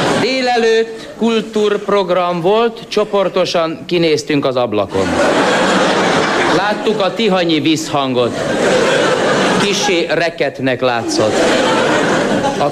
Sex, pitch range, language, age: male, 155-205 Hz, Hungarian, 60-79